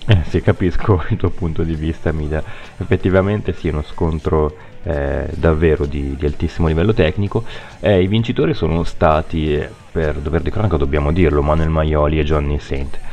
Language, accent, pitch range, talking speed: Italian, native, 75-100 Hz, 165 wpm